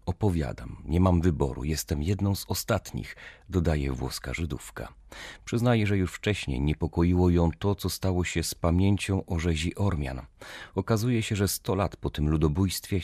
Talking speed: 155 wpm